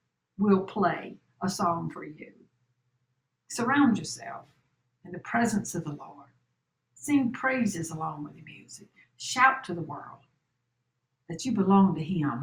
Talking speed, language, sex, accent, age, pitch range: 140 wpm, English, female, American, 60-79, 150-215 Hz